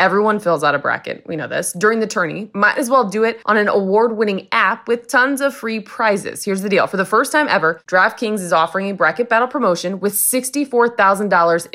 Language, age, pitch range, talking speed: English, 20-39, 180-245 Hz, 215 wpm